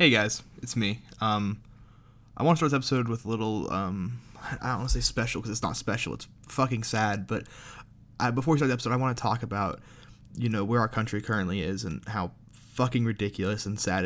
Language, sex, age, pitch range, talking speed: English, male, 20-39, 110-125 Hz, 220 wpm